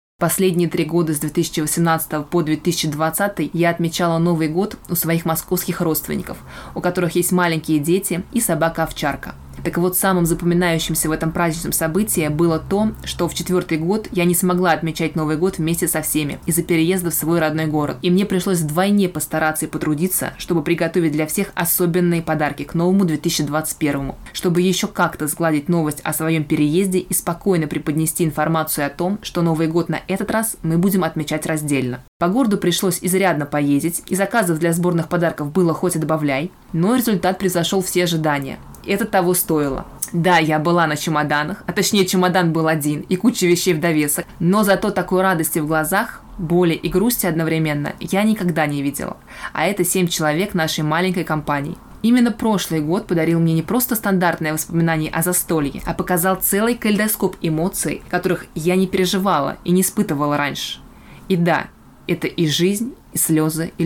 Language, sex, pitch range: Russian, female, 160-185 Hz